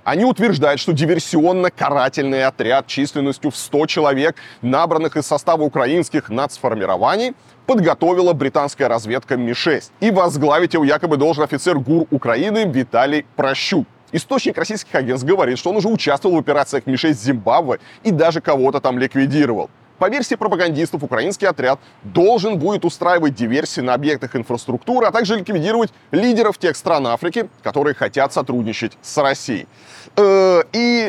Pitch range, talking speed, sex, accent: 130-175 Hz, 135 wpm, male, native